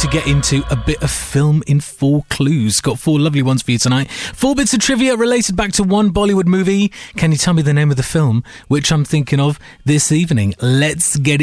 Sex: male